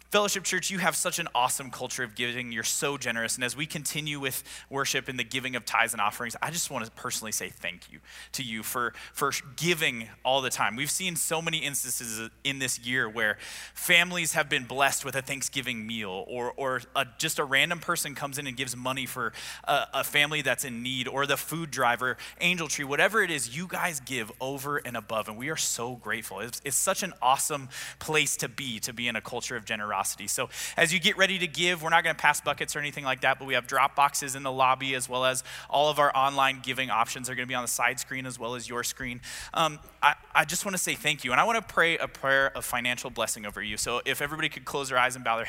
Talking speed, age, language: 250 wpm, 20-39, English